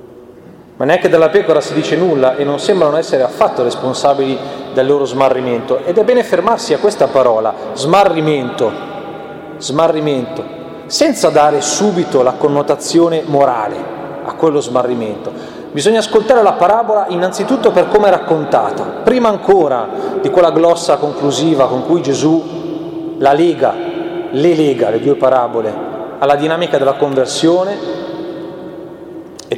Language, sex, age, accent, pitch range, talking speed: Italian, male, 30-49, native, 135-195 Hz, 130 wpm